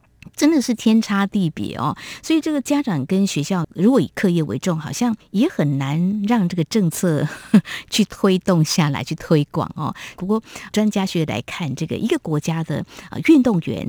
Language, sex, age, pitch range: Chinese, female, 50-69, 150-210 Hz